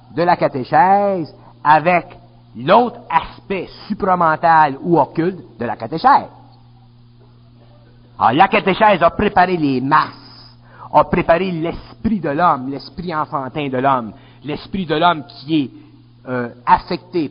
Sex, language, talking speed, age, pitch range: male, French, 120 wpm, 50-69, 130-175 Hz